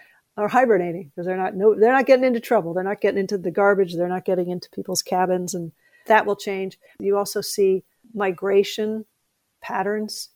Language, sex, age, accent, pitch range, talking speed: English, female, 50-69, American, 185-210 Hz, 185 wpm